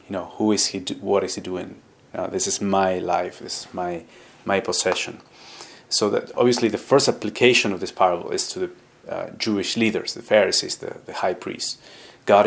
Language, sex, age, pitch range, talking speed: English, male, 30-49, 100-125 Hz, 190 wpm